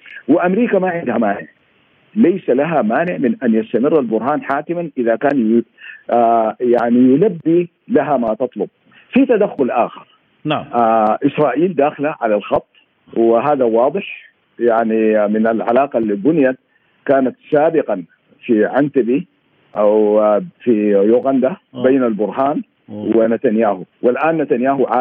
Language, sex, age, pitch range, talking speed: Arabic, male, 50-69, 115-165 Hz, 115 wpm